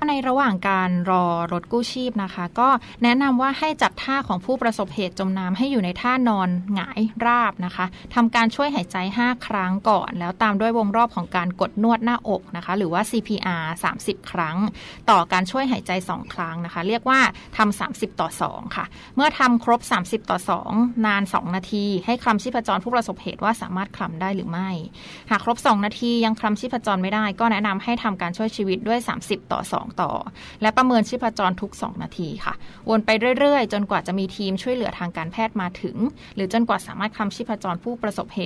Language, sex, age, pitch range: Thai, female, 20-39, 185-235 Hz